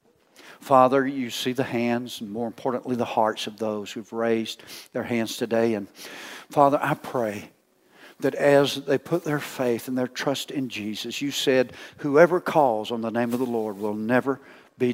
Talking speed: 180 wpm